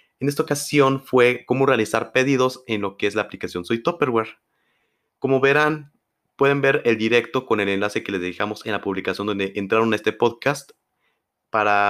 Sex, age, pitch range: male, 30-49, 100-130 Hz